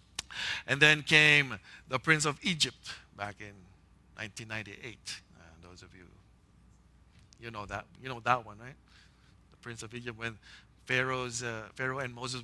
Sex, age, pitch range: male, 50-69, 115-155 Hz